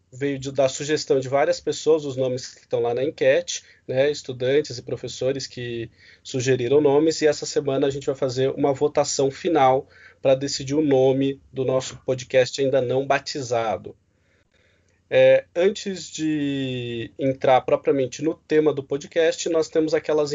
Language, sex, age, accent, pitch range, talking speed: Portuguese, male, 20-39, Brazilian, 135-160 Hz, 155 wpm